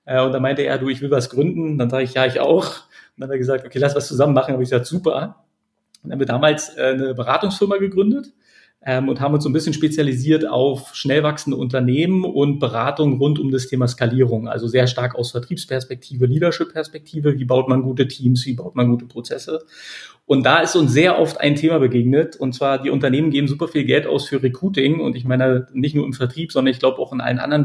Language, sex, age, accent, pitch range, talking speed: German, male, 40-59, German, 130-150 Hz, 230 wpm